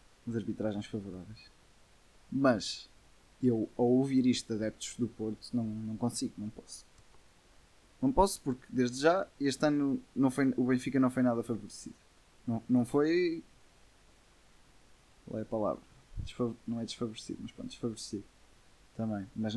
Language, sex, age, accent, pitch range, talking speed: Portuguese, male, 20-39, Portuguese, 110-125 Hz, 145 wpm